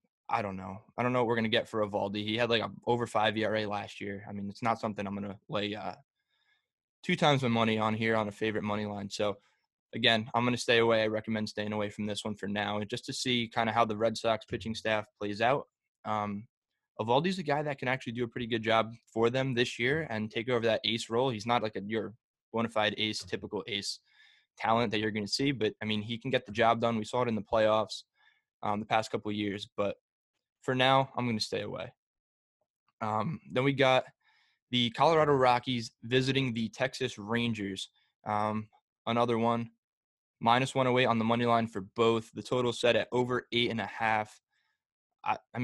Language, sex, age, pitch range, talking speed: English, male, 20-39, 105-120 Hz, 225 wpm